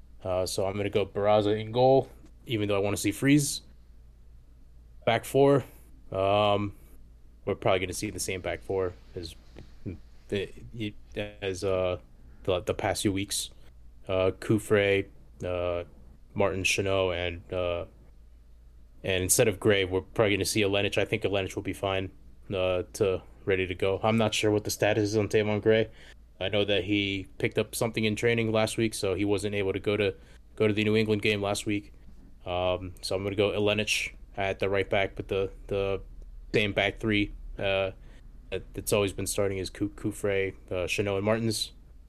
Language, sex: English, male